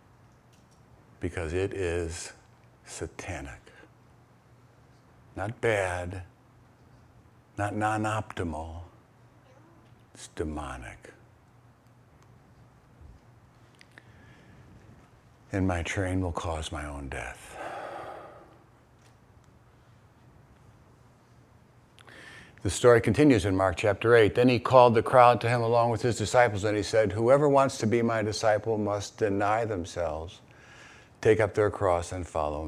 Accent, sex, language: American, male, English